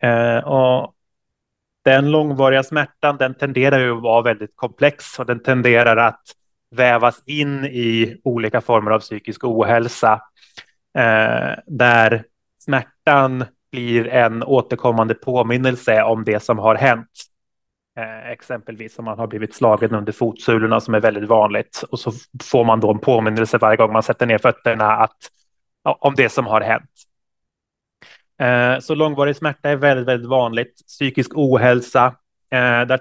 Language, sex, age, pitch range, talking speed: Swedish, male, 20-39, 115-130 Hz, 135 wpm